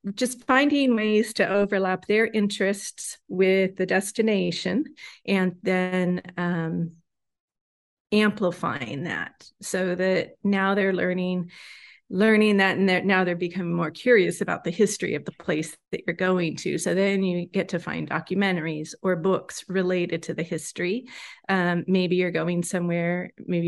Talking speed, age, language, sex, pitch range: 145 wpm, 40-59, English, female, 170-195 Hz